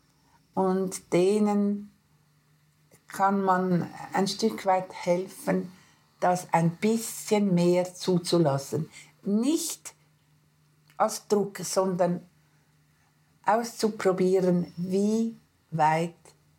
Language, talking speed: German, 70 wpm